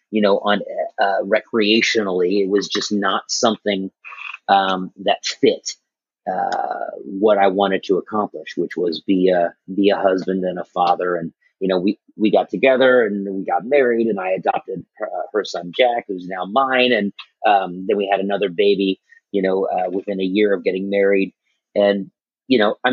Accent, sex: American, male